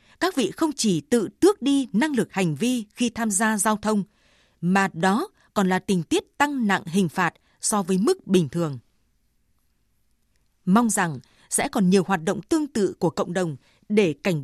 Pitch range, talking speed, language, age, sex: 185-245 Hz, 185 wpm, Vietnamese, 20-39, female